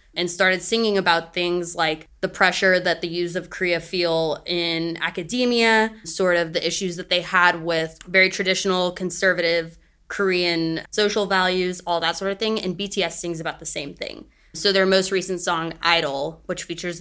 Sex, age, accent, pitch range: female, 20-39, American, 170-195 Hz